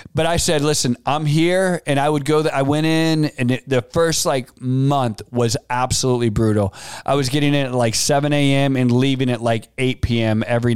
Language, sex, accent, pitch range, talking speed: English, male, American, 125-165 Hz, 210 wpm